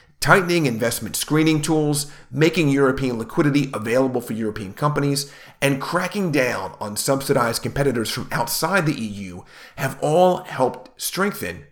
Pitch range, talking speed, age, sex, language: 110-150 Hz, 130 wpm, 40-59, male, English